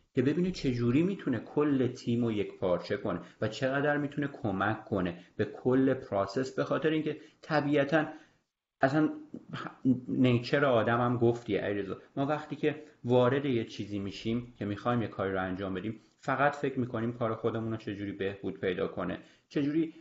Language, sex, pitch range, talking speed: Persian, male, 110-145 Hz, 145 wpm